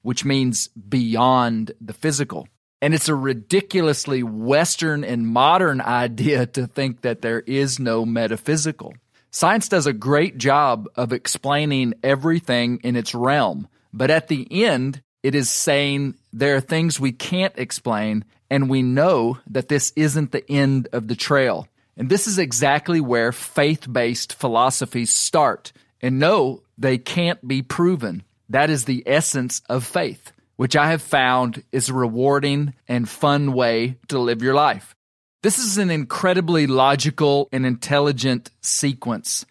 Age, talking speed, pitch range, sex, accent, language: 40-59, 145 wpm, 120-150 Hz, male, American, English